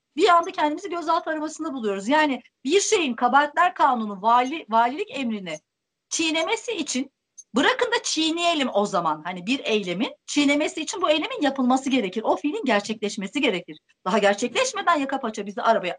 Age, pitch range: 40-59, 225-340 Hz